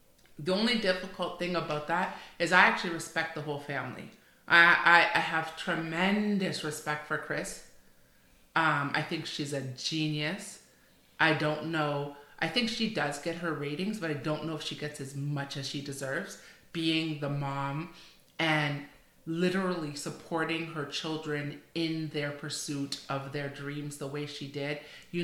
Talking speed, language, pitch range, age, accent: 160 wpm, English, 150-175 Hz, 30-49, American